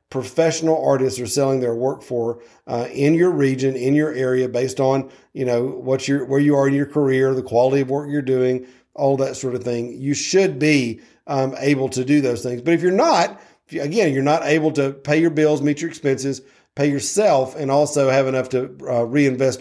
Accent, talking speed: American, 220 wpm